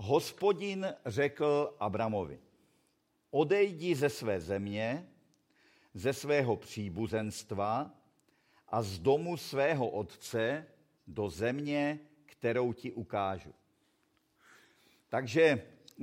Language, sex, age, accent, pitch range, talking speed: Czech, male, 50-69, native, 110-145 Hz, 80 wpm